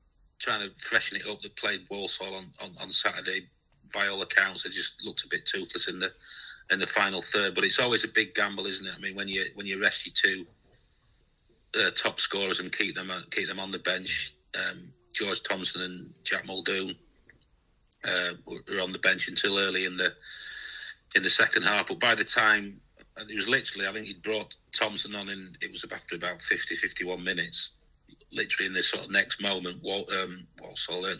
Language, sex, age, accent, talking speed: English, male, 40-59, British, 205 wpm